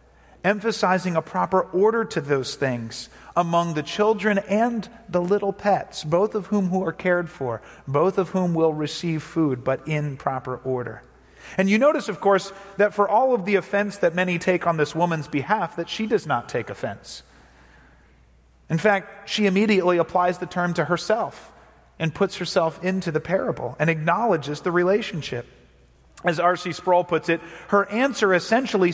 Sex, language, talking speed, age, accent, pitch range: male, English, 170 wpm, 40-59, American, 155-205 Hz